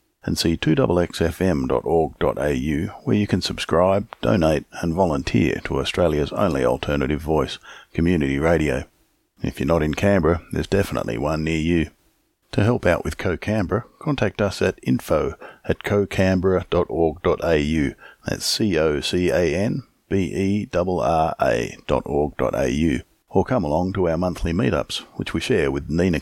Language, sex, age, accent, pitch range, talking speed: English, male, 50-69, Australian, 80-100 Hz, 120 wpm